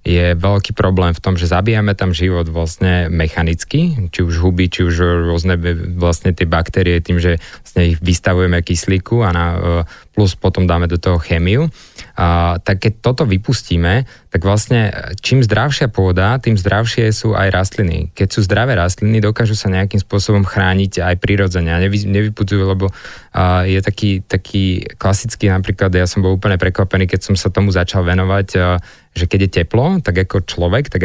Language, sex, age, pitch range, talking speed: Slovak, male, 20-39, 90-100 Hz, 170 wpm